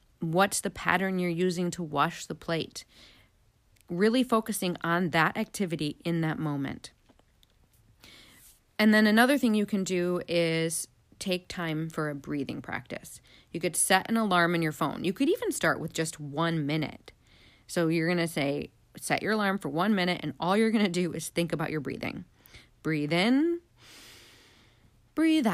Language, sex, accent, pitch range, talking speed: English, female, American, 160-215 Hz, 170 wpm